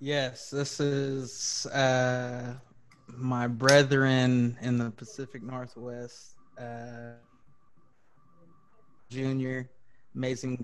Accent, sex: American, male